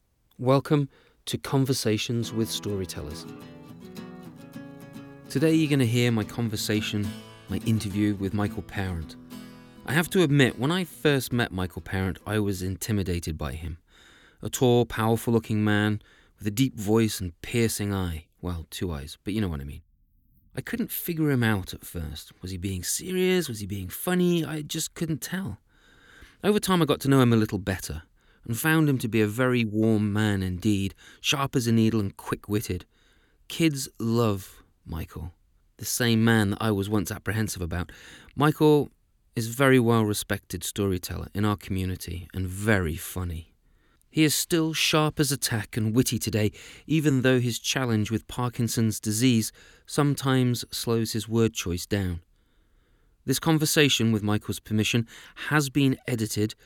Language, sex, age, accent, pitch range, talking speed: English, male, 30-49, British, 95-130 Hz, 160 wpm